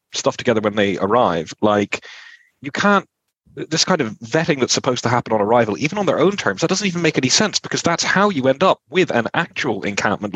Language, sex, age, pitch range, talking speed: English, male, 30-49, 115-170 Hz, 225 wpm